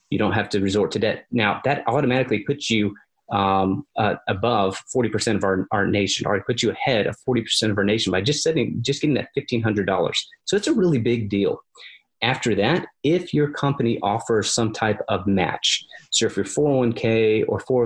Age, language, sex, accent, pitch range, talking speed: 30-49, English, male, American, 100-125 Hz, 190 wpm